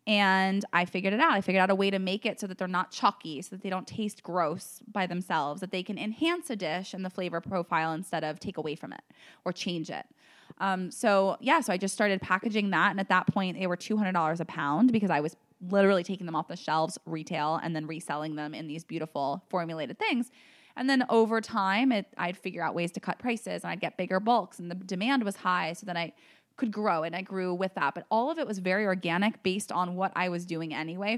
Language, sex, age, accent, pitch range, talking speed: English, female, 20-39, American, 170-210 Hz, 245 wpm